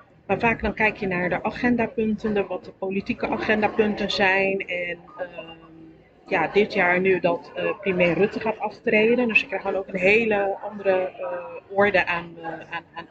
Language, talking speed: Dutch, 175 wpm